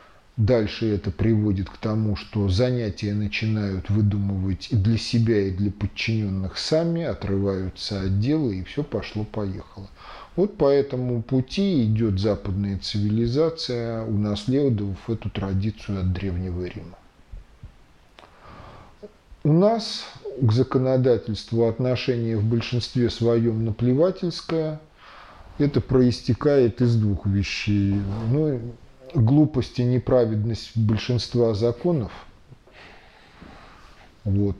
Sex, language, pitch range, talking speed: male, Russian, 100-125 Hz, 95 wpm